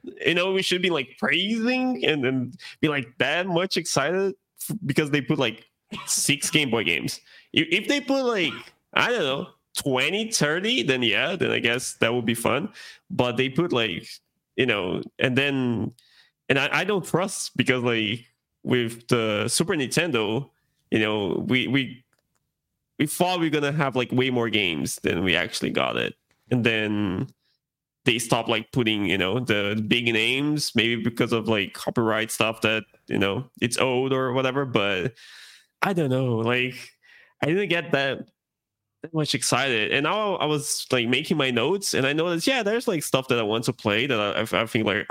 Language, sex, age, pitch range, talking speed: English, male, 20-39, 115-160 Hz, 185 wpm